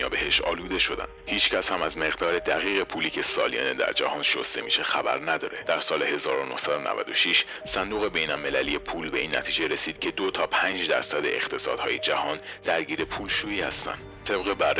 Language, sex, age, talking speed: Persian, male, 40-59, 165 wpm